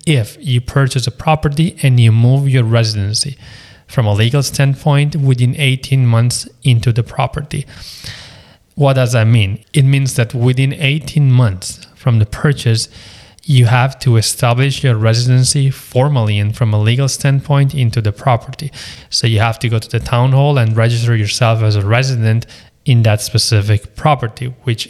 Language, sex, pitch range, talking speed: English, male, 110-130 Hz, 165 wpm